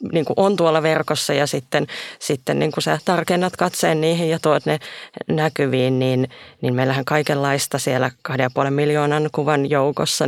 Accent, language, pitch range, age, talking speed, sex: native, Finnish, 130-165 Hz, 30-49, 150 wpm, female